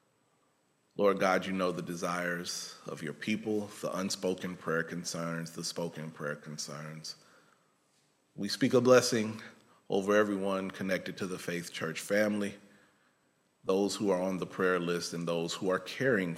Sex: male